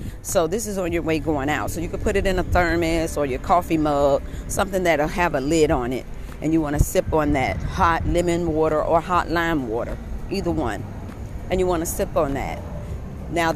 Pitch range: 125-185 Hz